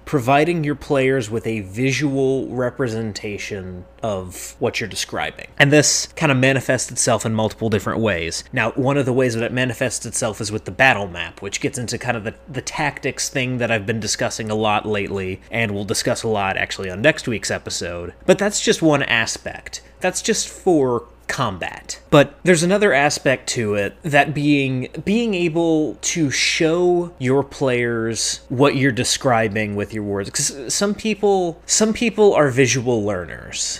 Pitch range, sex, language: 110-145 Hz, male, English